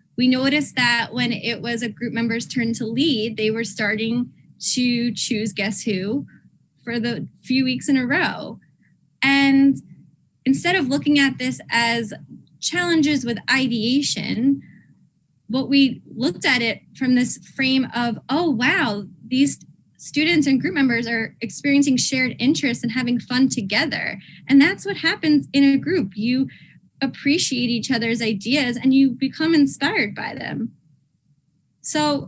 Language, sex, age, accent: English, female, 10-29, American